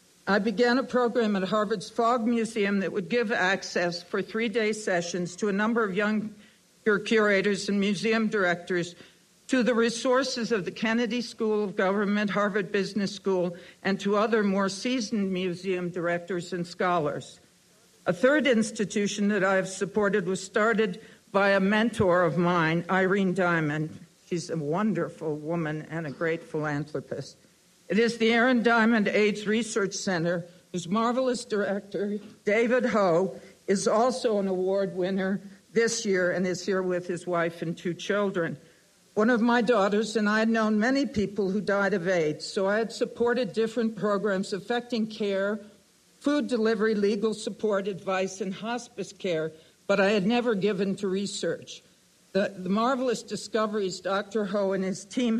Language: English